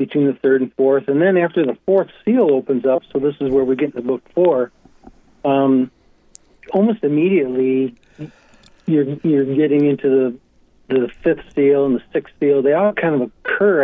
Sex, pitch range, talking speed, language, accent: male, 130-155 Hz, 180 wpm, English, American